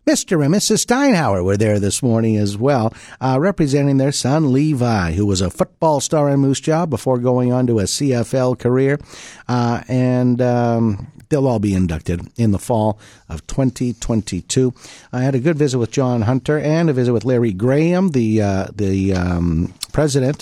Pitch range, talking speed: 105-135 Hz, 180 wpm